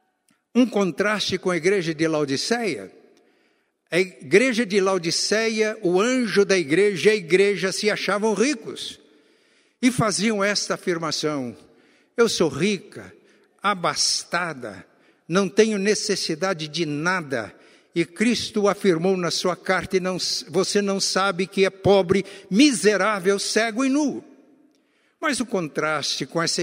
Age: 60-79